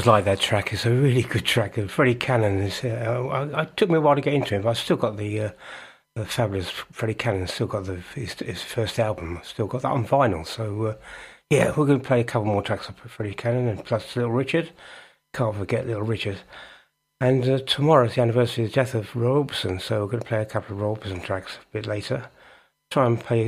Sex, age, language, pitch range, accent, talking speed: male, 60-79, English, 105-130 Hz, British, 245 wpm